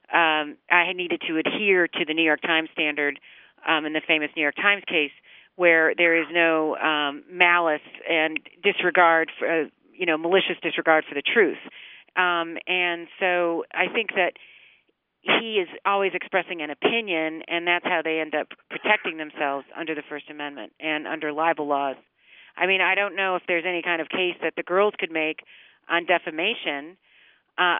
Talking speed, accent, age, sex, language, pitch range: 180 wpm, American, 40-59, female, English, 160-190 Hz